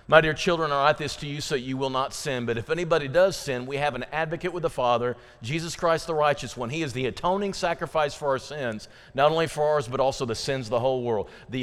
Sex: male